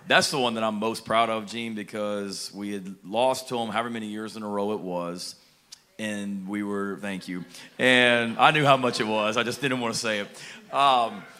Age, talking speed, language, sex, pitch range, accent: 30-49, 230 wpm, English, male, 95-120 Hz, American